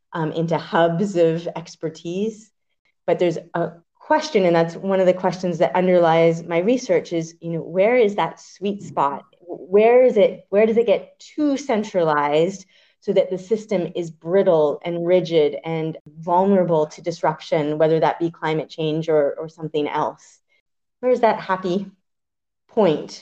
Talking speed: 160 wpm